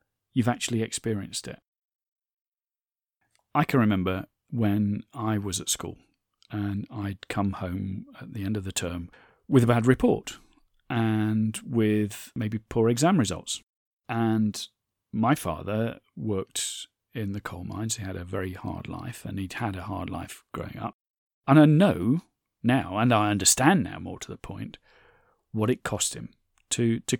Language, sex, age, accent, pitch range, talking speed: English, male, 40-59, British, 105-120 Hz, 160 wpm